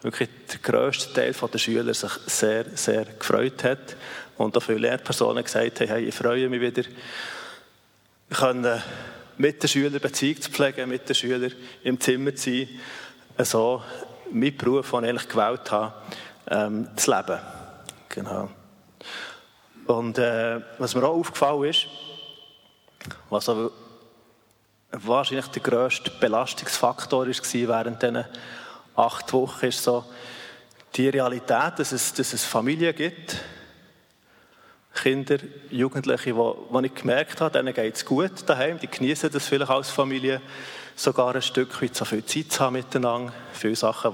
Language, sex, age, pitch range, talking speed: German, male, 30-49, 115-135 Hz, 135 wpm